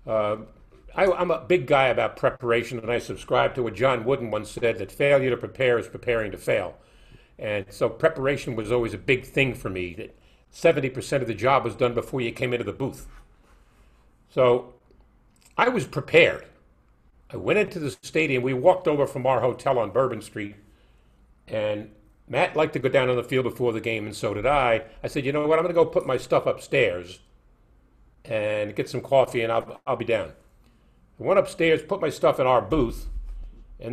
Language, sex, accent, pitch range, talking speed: English, male, American, 110-145 Hz, 200 wpm